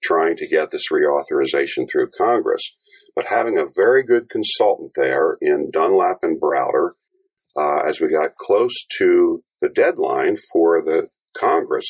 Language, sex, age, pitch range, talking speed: English, male, 50-69, 370-425 Hz, 145 wpm